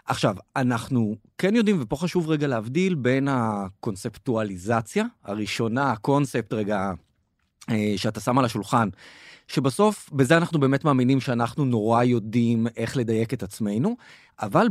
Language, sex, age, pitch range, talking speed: Hebrew, male, 30-49, 115-140 Hz, 120 wpm